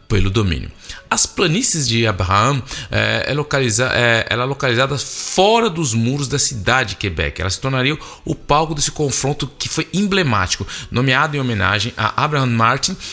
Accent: Brazilian